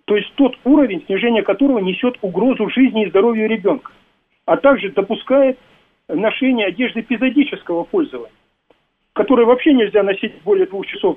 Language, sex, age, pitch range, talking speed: Russian, male, 50-69, 190-250 Hz, 140 wpm